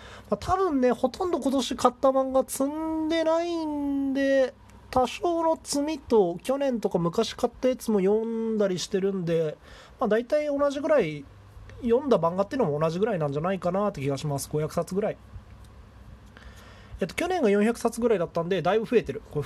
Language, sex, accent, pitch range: Japanese, male, native, 135-225 Hz